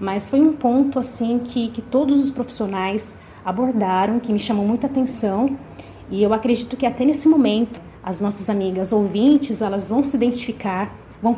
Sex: female